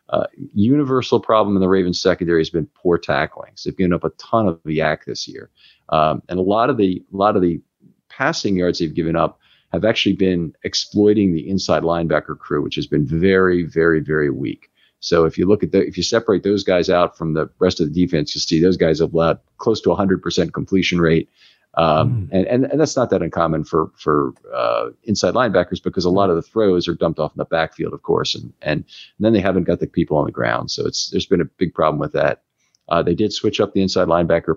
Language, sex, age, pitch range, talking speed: English, male, 50-69, 80-100 Hz, 240 wpm